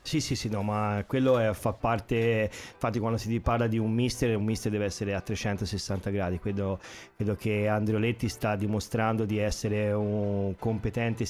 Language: Italian